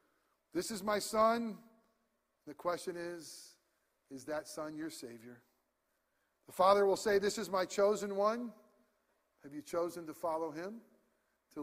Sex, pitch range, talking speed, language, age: male, 145-190 Hz, 145 wpm, English, 40-59